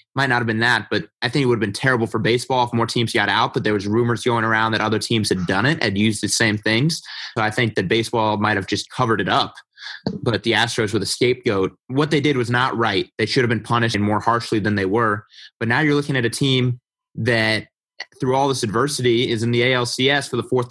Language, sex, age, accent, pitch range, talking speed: English, male, 20-39, American, 110-125 Hz, 260 wpm